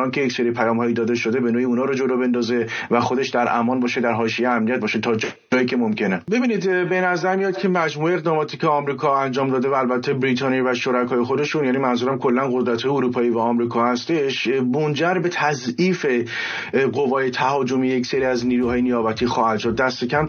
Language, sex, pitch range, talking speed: English, male, 120-140 Hz, 185 wpm